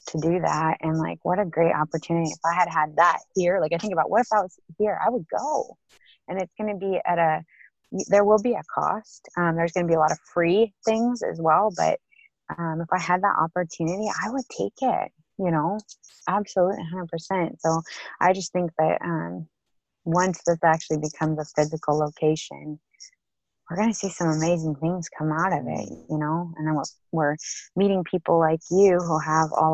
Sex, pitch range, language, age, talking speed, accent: female, 160-185 Hz, English, 20-39, 205 wpm, American